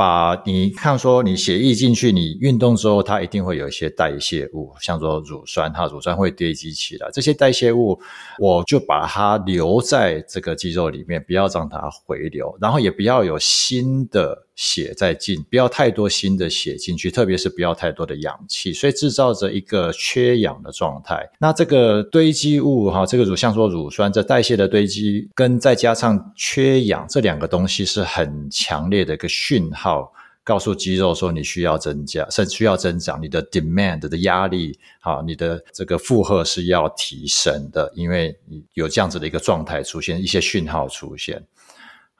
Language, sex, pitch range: Chinese, male, 85-120 Hz